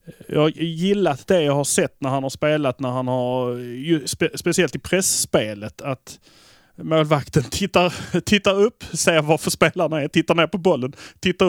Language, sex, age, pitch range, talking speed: Swedish, male, 30-49, 125-160 Hz, 165 wpm